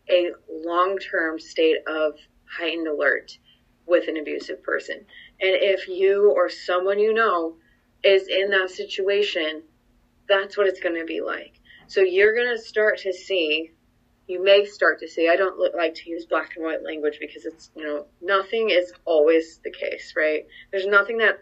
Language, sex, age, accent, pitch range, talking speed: English, female, 20-39, American, 165-190 Hz, 170 wpm